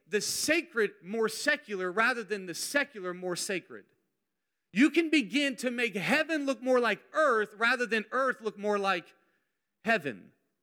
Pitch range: 210-285 Hz